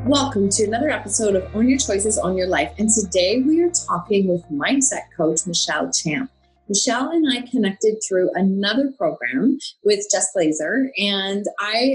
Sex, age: female, 30-49